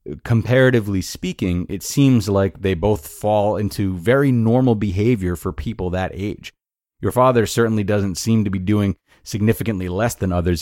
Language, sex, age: English, male, 30-49